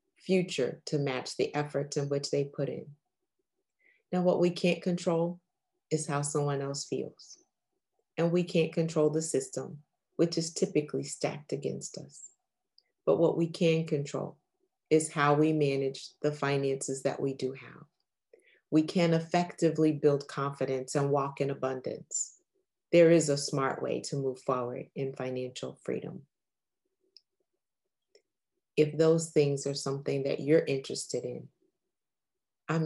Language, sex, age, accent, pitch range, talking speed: English, female, 30-49, American, 140-170 Hz, 140 wpm